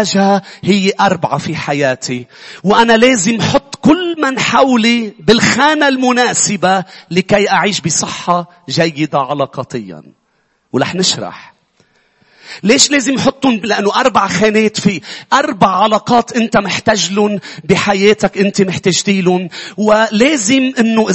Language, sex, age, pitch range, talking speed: English, male, 40-59, 200-280 Hz, 100 wpm